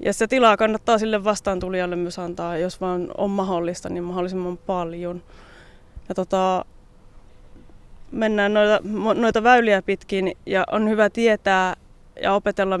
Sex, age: female, 20-39